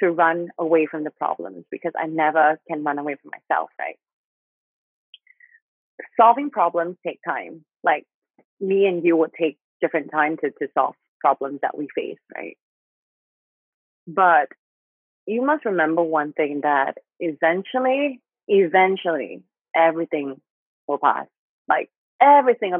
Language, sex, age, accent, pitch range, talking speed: English, female, 30-49, American, 155-200 Hz, 130 wpm